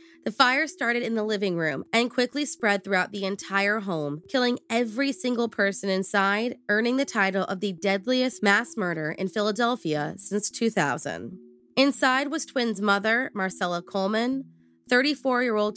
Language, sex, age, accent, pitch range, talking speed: English, female, 20-39, American, 180-245 Hz, 145 wpm